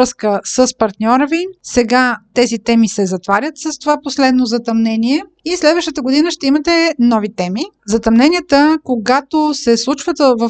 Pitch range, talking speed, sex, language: 225-280 Hz, 130 wpm, female, Bulgarian